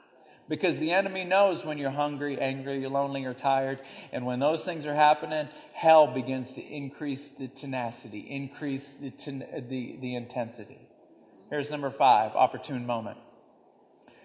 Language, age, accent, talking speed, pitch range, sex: English, 40-59, American, 145 wpm, 135-175 Hz, male